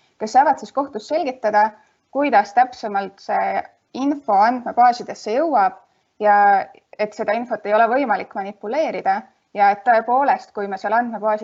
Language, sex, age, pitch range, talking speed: English, female, 20-39, 205-260 Hz, 140 wpm